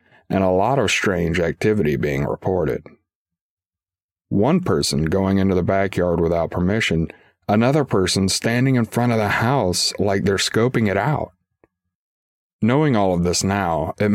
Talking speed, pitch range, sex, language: 150 wpm, 90-110 Hz, male, English